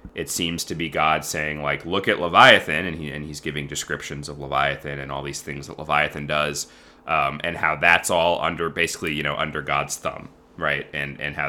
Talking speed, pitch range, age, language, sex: 215 wpm, 70-90 Hz, 30-49, English, male